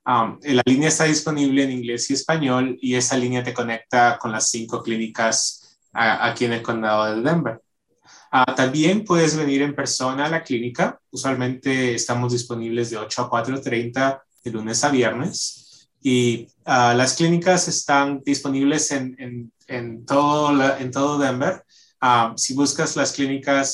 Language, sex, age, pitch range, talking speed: English, male, 20-39, 115-140 Hz, 160 wpm